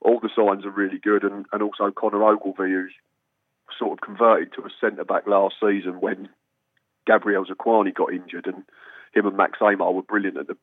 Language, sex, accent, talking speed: English, male, British, 190 wpm